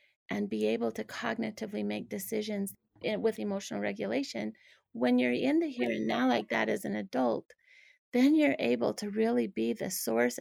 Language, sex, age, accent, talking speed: English, female, 30-49, American, 175 wpm